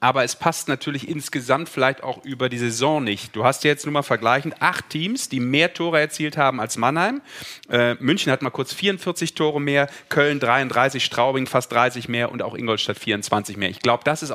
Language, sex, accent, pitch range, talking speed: German, male, German, 120-145 Hz, 210 wpm